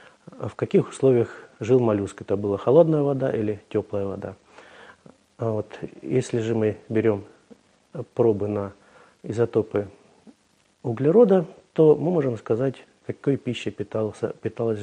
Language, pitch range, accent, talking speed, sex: Russian, 105-135 Hz, native, 110 wpm, male